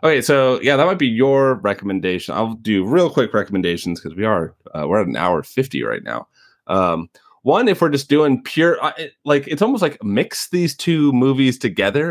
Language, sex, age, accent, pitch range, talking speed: English, male, 30-49, American, 95-135 Hz, 205 wpm